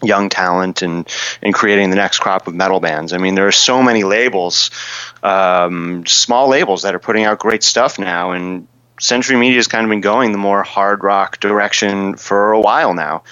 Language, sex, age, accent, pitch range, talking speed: English, male, 30-49, American, 100-115 Hz, 205 wpm